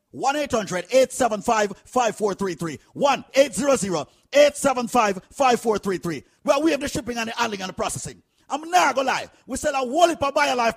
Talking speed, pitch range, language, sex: 140 wpm, 225-300 Hz, English, male